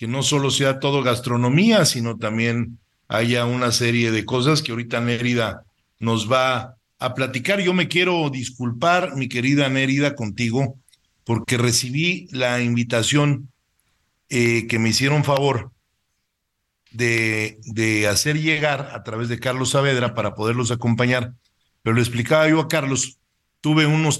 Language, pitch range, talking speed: Spanish, 115-145 Hz, 140 wpm